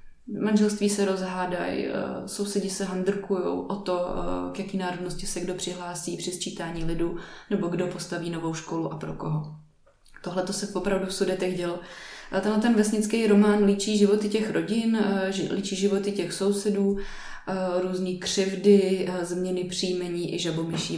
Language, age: Czech, 20-39